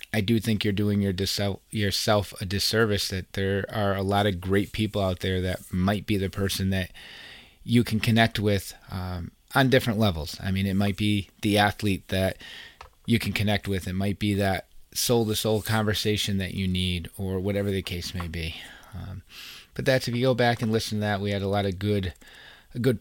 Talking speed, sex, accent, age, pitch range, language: 200 wpm, male, American, 30-49, 95-115 Hz, English